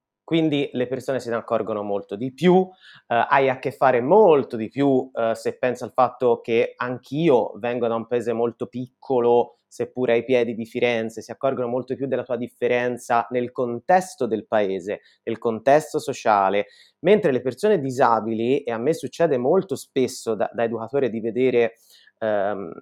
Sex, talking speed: male, 170 wpm